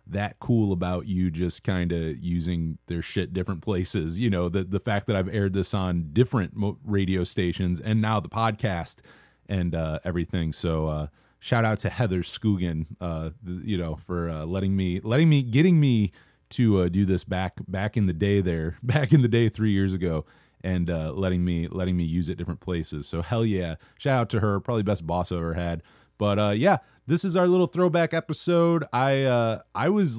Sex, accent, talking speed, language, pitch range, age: male, American, 205 wpm, English, 90-125 Hz, 30-49